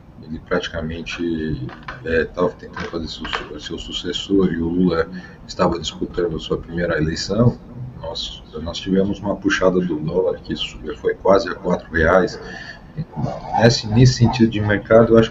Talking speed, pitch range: 150 wpm, 90-115 Hz